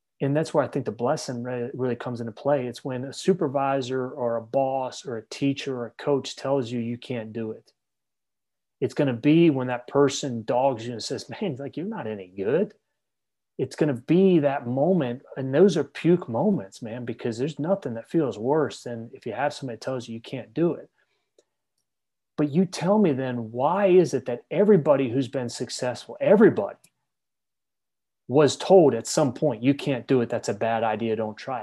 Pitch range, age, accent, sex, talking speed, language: 125-165 Hz, 30-49, American, male, 200 wpm, English